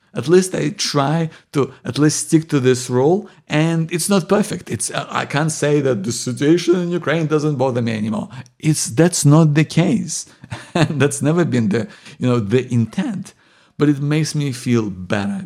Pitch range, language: 120-165 Hz, English